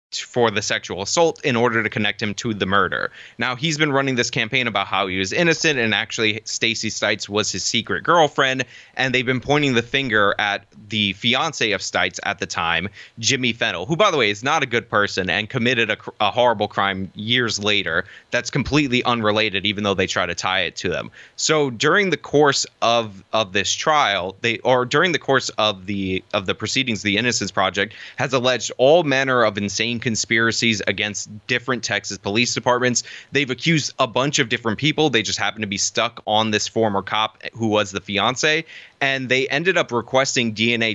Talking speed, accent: 200 wpm, American